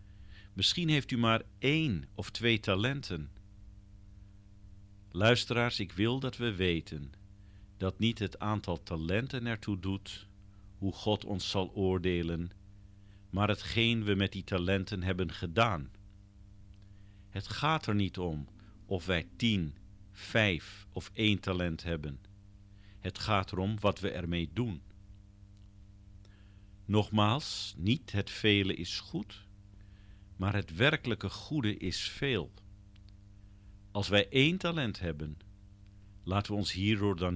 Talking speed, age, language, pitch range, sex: 120 wpm, 50-69, Dutch, 95-105 Hz, male